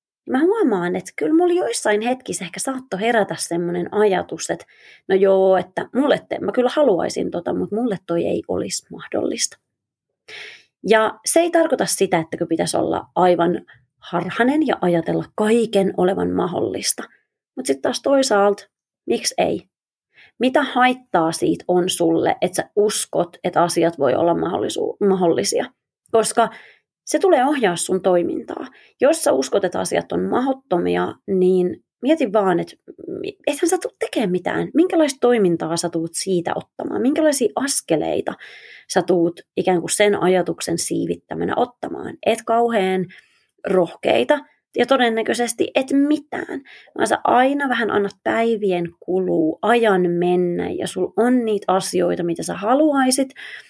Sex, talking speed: female, 135 wpm